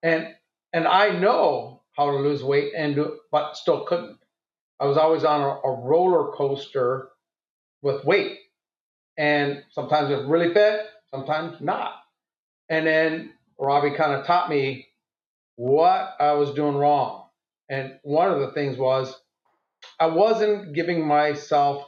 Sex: male